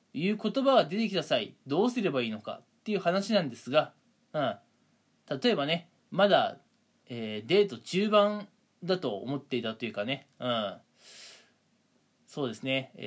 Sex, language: male, Japanese